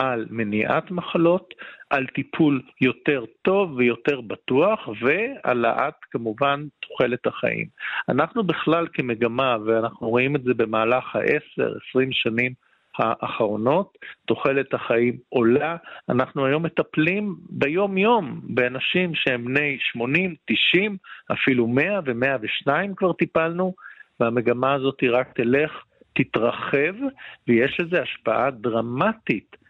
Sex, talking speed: male, 105 wpm